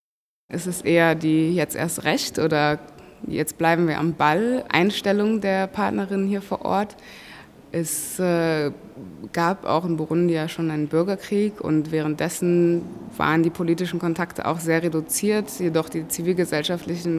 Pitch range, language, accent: 160-180 Hz, German, German